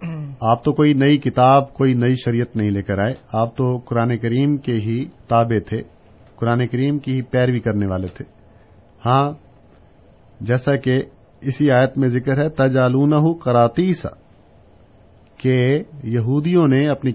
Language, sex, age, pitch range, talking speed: Urdu, male, 50-69, 115-145 Hz, 145 wpm